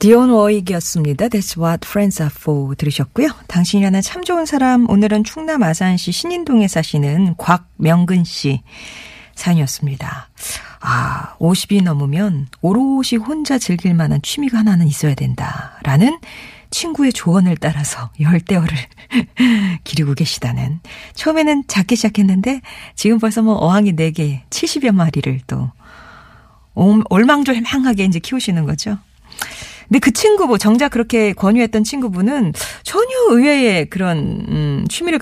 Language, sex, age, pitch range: Korean, female, 40-59, 155-235 Hz